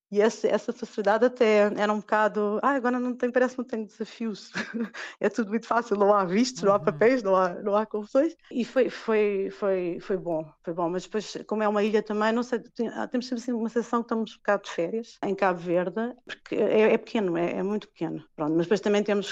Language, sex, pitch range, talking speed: Portuguese, female, 185-225 Hz, 225 wpm